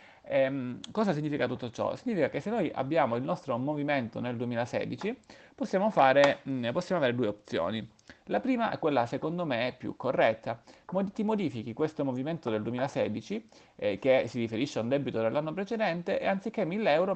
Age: 30-49